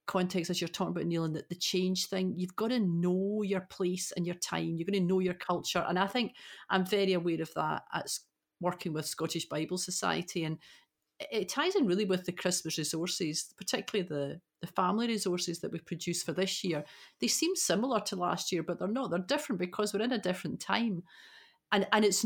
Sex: female